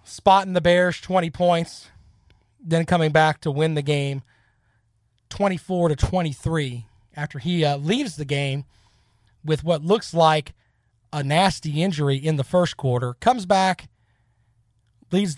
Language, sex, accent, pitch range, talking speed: English, male, American, 125-185 Hz, 135 wpm